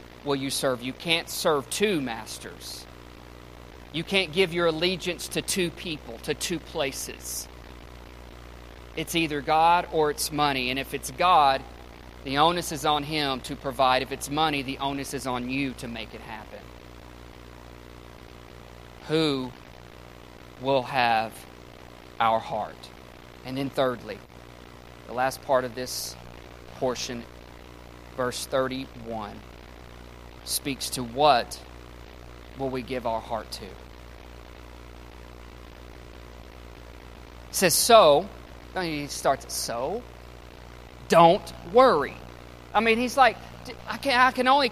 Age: 40-59